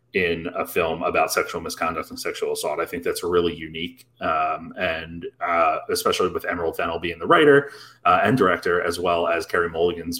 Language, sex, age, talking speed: English, male, 30-49, 190 wpm